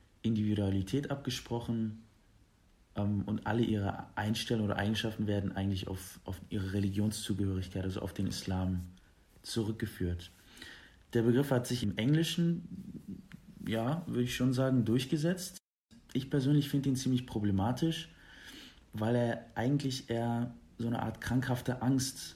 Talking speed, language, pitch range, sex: 125 wpm, German, 100-120 Hz, male